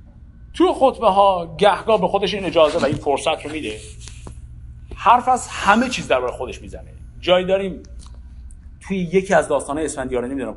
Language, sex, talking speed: Persian, male, 155 wpm